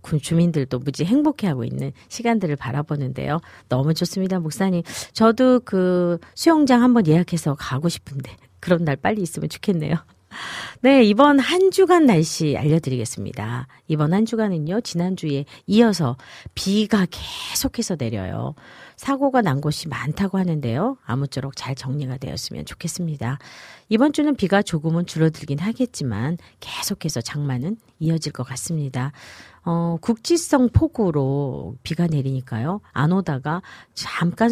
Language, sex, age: Korean, female, 40-59